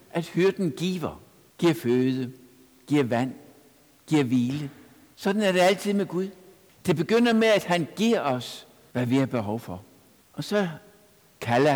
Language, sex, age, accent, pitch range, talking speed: Danish, male, 60-79, native, 125-165 Hz, 155 wpm